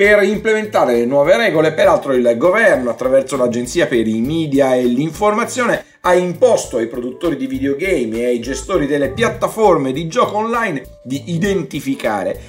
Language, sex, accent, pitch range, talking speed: Italian, male, native, 120-180 Hz, 150 wpm